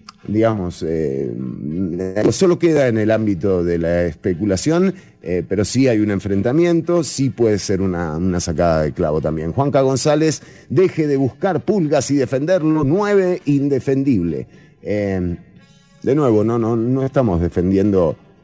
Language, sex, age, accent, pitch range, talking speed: English, male, 30-49, Argentinian, 90-130 Hz, 135 wpm